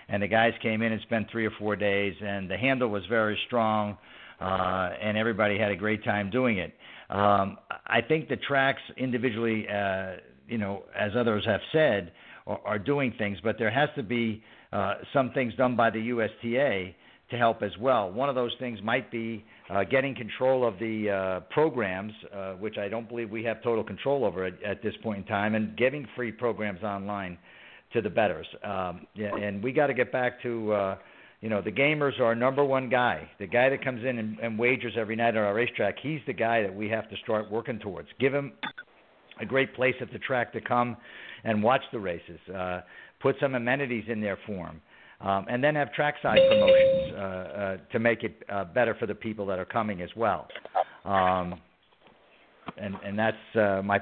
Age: 50-69